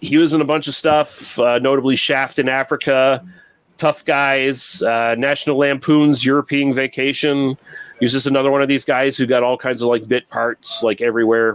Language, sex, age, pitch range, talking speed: English, male, 30-49, 125-150 Hz, 190 wpm